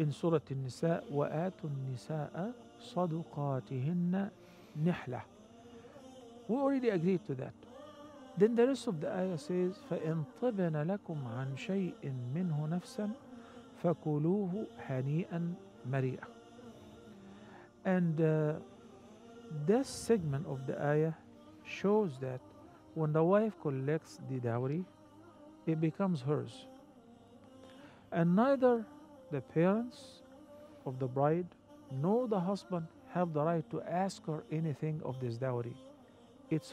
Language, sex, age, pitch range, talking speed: English, male, 50-69, 150-220 Hz, 85 wpm